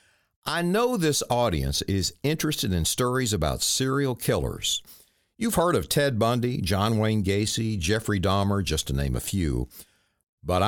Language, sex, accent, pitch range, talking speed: English, male, American, 100-140 Hz, 150 wpm